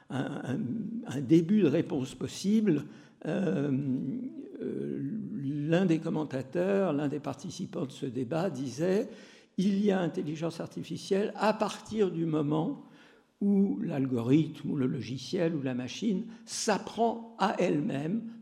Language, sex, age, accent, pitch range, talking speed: French, male, 60-79, French, 140-200 Hz, 125 wpm